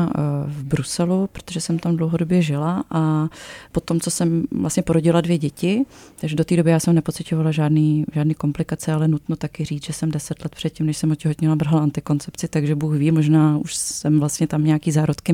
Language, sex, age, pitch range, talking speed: Czech, female, 30-49, 150-165 Hz, 190 wpm